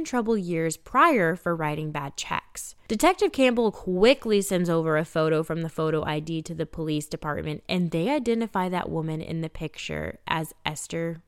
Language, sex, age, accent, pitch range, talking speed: English, female, 10-29, American, 155-195 Hz, 170 wpm